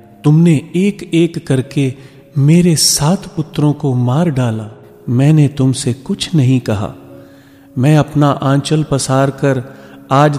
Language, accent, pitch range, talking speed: Hindi, native, 115-140 Hz, 120 wpm